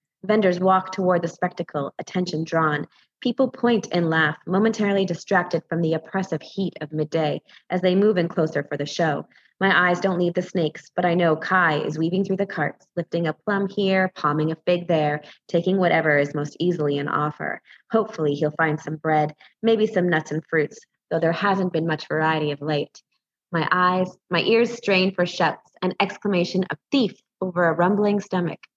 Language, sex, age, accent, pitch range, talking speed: English, female, 20-39, American, 155-185 Hz, 190 wpm